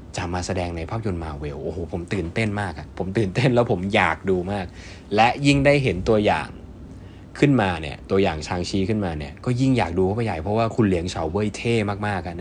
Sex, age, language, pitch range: male, 20-39, Thai, 85-110 Hz